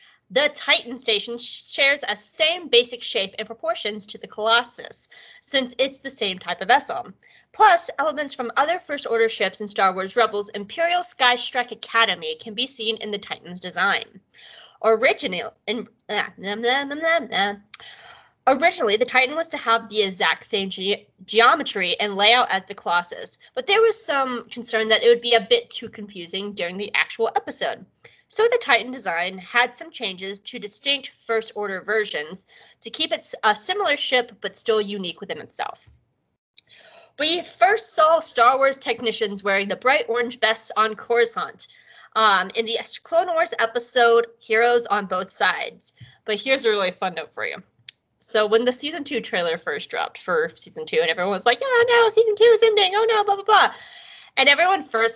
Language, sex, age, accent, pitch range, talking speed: English, female, 20-39, American, 210-295 Hz, 180 wpm